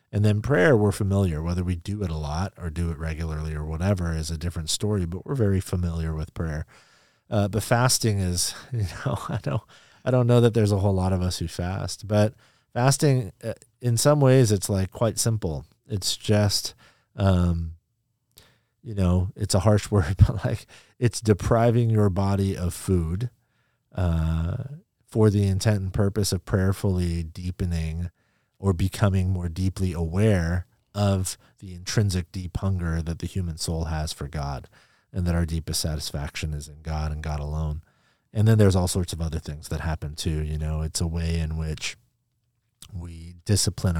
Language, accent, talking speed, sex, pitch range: English, American, 170 wpm, male, 80-105 Hz